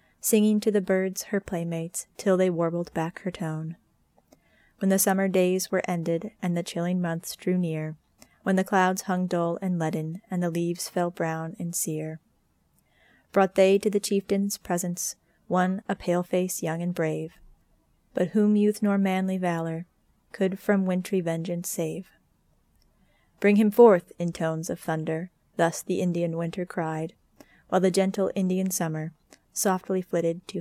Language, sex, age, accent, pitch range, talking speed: English, female, 30-49, American, 165-190 Hz, 160 wpm